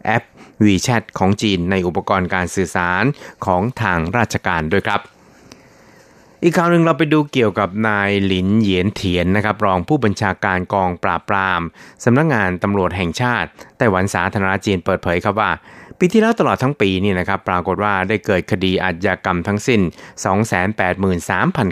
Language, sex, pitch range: Thai, male, 95-115 Hz